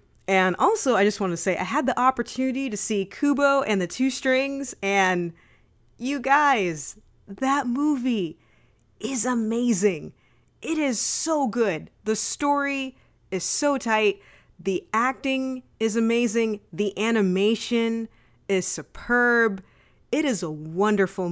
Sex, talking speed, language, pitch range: female, 130 wpm, English, 170-230 Hz